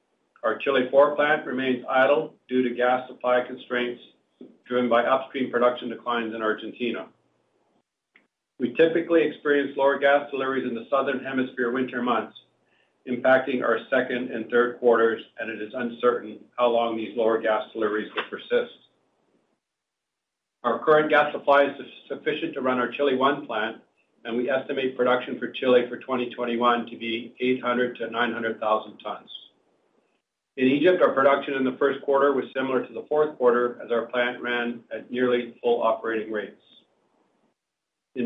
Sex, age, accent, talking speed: male, 50-69, American, 155 wpm